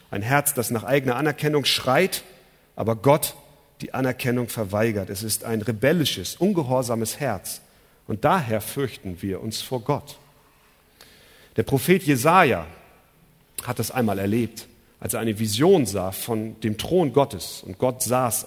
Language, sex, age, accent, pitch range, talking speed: German, male, 40-59, German, 110-150 Hz, 145 wpm